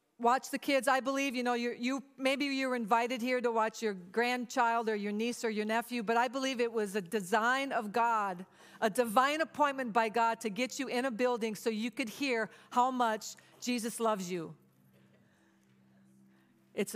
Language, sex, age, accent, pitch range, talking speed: English, female, 50-69, American, 225-320 Hz, 190 wpm